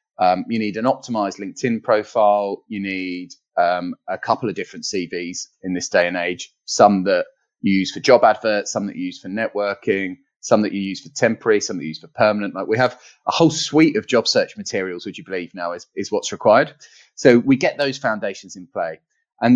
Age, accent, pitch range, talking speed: 30-49, British, 95-125 Hz, 220 wpm